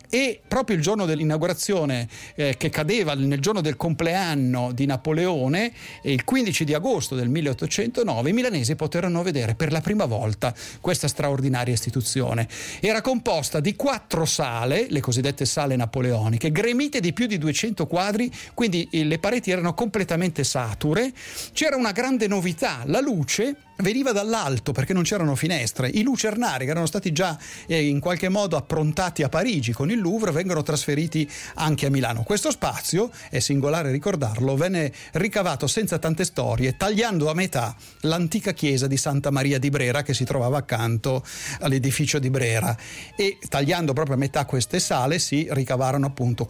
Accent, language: native, Italian